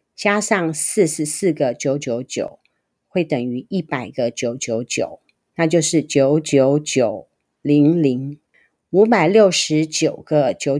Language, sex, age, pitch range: Chinese, female, 40-59, 140-185 Hz